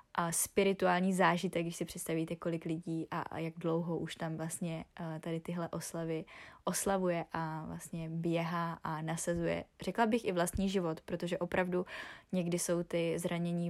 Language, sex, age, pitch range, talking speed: Czech, female, 20-39, 165-180 Hz, 150 wpm